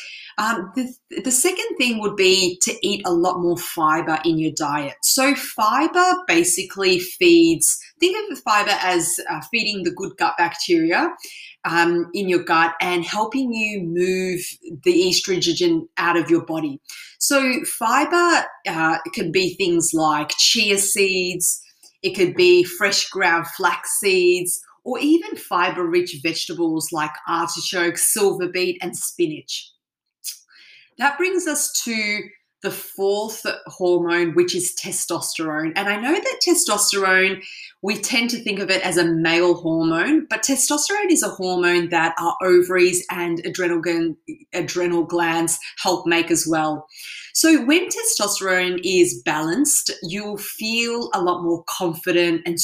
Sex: female